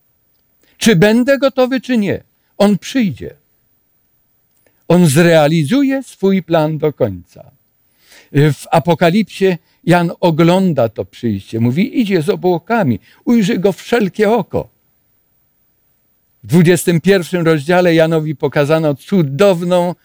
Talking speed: 100 wpm